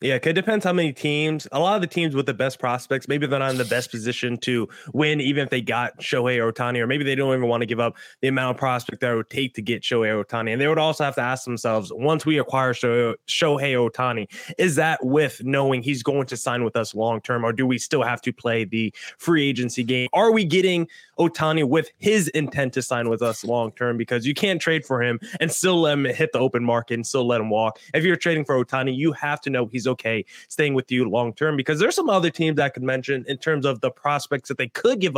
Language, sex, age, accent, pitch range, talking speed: English, male, 20-39, American, 120-155 Hz, 260 wpm